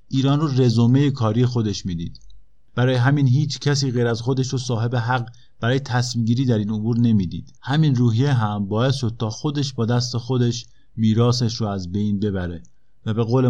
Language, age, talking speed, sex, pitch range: Persian, 50-69, 180 wpm, male, 110-130 Hz